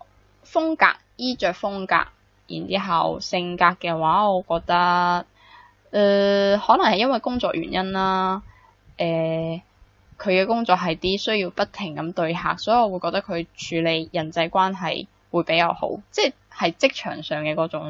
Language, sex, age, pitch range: Chinese, female, 10-29, 155-190 Hz